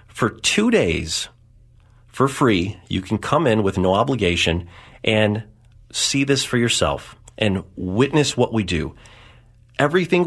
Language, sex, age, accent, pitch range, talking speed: English, male, 40-59, American, 95-125 Hz, 135 wpm